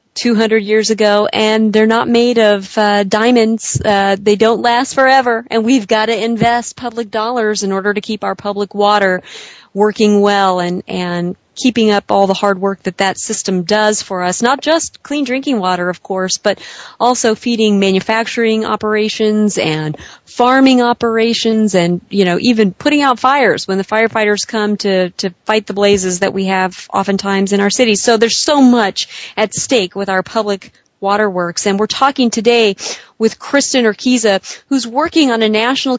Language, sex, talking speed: English, female, 175 wpm